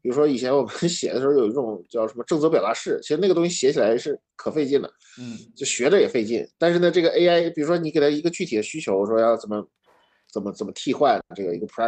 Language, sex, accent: Chinese, male, native